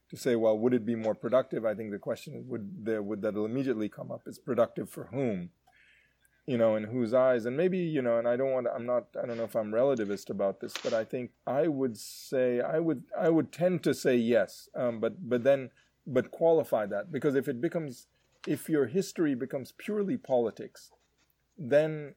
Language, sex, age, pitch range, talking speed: English, male, 30-49, 110-145 Hz, 210 wpm